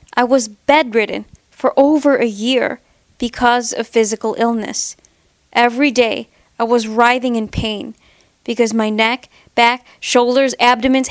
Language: English